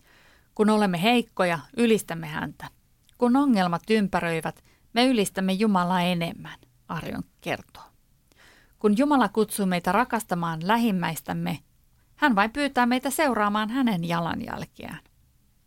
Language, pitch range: Finnish, 175-235 Hz